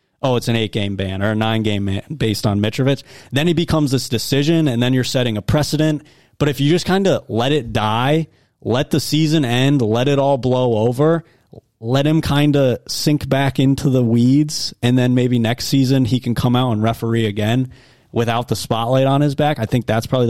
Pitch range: 110-135 Hz